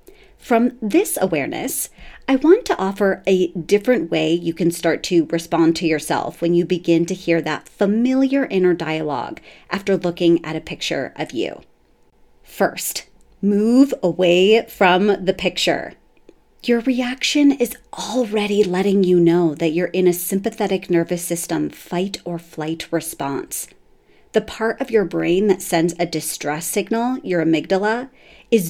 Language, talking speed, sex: English, 140 wpm, female